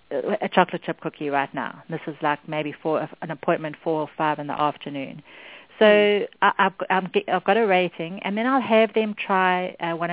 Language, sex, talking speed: English, female, 185 wpm